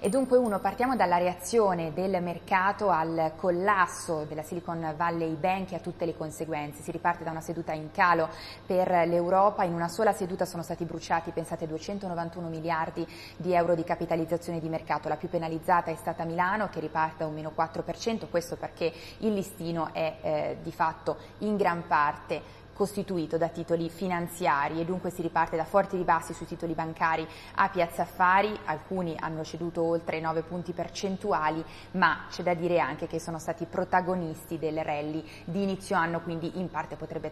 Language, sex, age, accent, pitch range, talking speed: Italian, female, 20-39, native, 165-185 Hz, 175 wpm